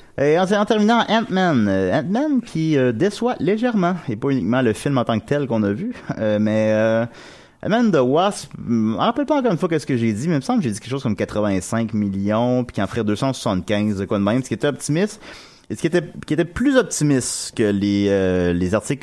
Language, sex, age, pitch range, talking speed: French, male, 30-49, 100-145 Hz, 235 wpm